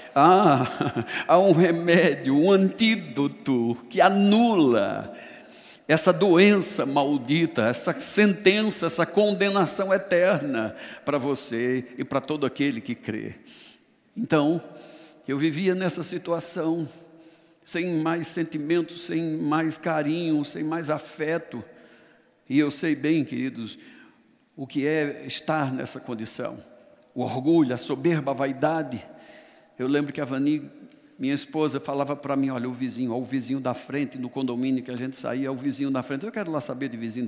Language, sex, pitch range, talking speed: Portuguese, male, 135-170 Hz, 140 wpm